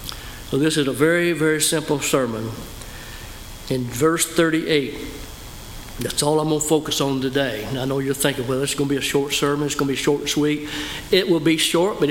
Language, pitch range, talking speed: English, 125-155 Hz, 220 wpm